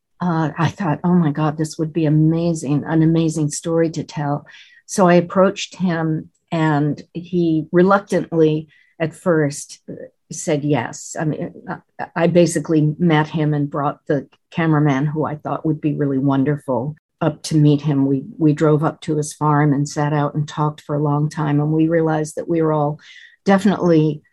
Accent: American